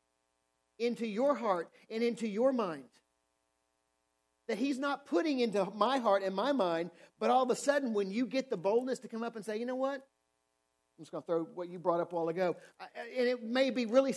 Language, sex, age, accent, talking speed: English, male, 40-59, American, 220 wpm